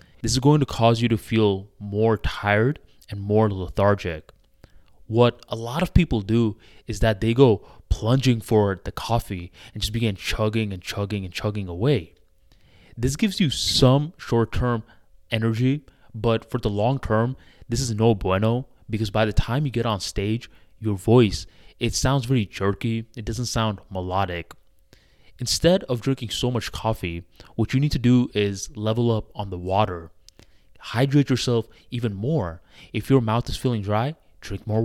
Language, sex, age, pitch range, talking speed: English, male, 20-39, 100-125 Hz, 170 wpm